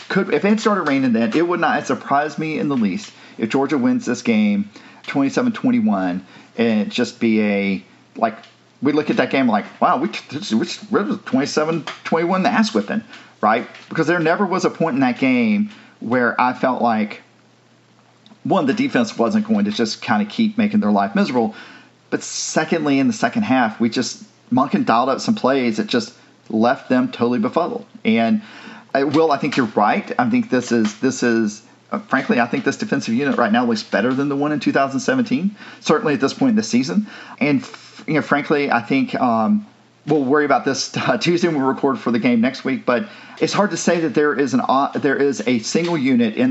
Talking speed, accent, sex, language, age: 205 wpm, American, male, English, 40-59